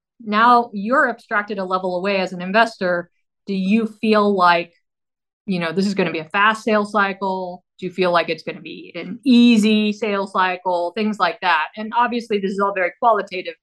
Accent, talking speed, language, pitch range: American, 205 wpm, English, 190-235 Hz